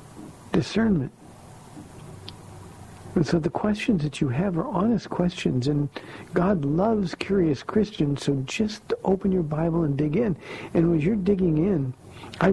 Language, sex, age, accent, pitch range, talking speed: English, male, 50-69, American, 135-180 Hz, 145 wpm